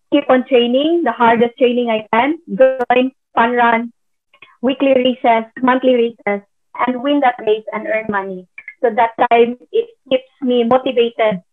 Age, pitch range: 20-39, 220-255 Hz